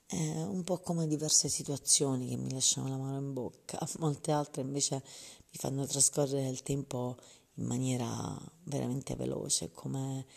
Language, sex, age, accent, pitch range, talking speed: Italian, female, 30-49, native, 120-140 Hz, 150 wpm